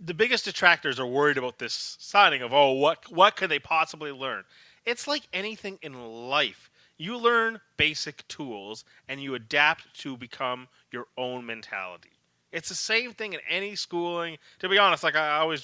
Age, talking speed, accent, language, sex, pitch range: 30-49, 175 wpm, American, English, male, 140-190 Hz